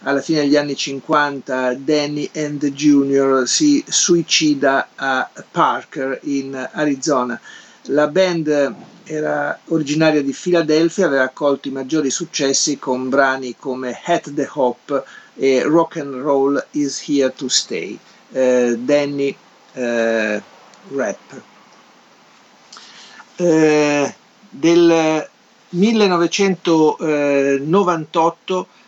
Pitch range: 135-165 Hz